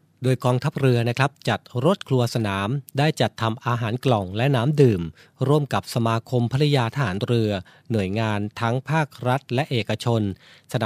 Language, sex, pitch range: Thai, male, 110-135 Hz